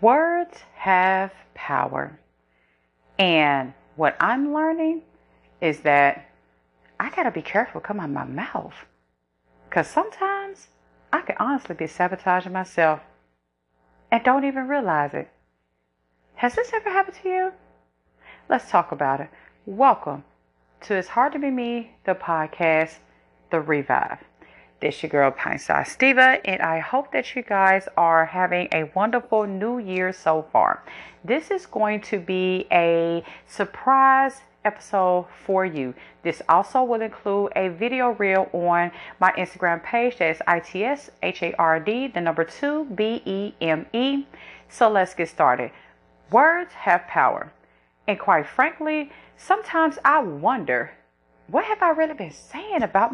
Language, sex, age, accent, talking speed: English, female, 40-59, American, 145 wpm